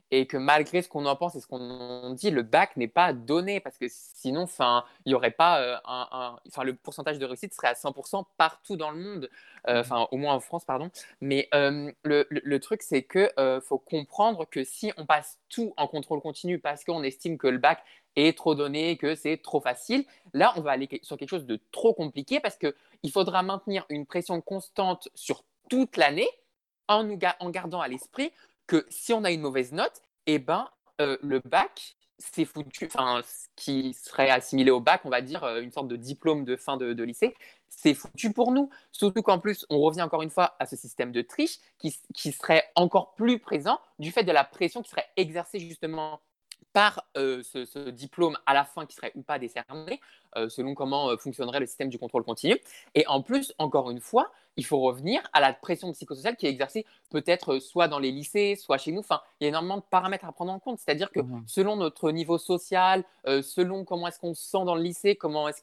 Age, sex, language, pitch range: 20-39, male, French, 135-190 Hz